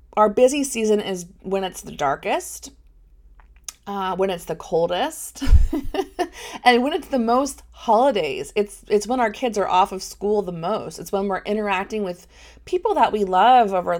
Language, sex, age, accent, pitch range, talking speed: English, female, 30-49, American, 180-245 Hz, 170 wpm